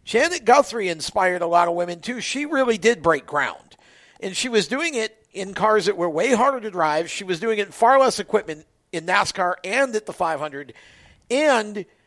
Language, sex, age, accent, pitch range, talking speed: English, male, 50-69, American, 170-225 Hz, 205 wpm